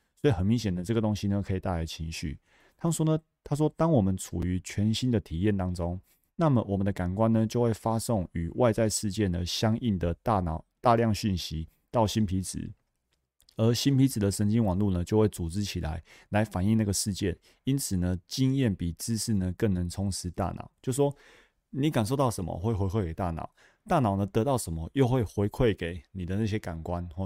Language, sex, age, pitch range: Chinese, male, 30-49, 90-120 Hz